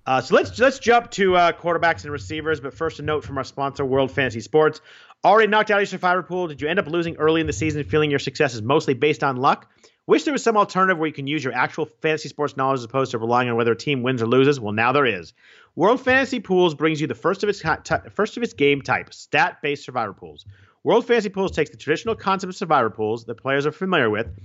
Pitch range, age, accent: 130-175 Hz, 40-59, American